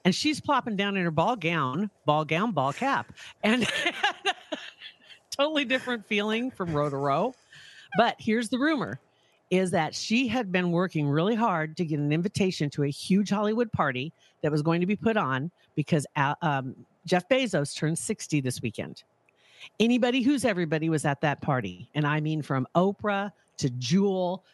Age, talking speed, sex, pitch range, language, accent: 50-69, 170 wpm, female, 150-205 Hz, English, American